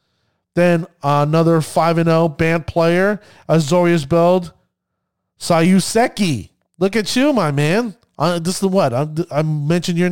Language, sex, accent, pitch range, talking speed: English, male, American, 140-190 Hz, 125 wpm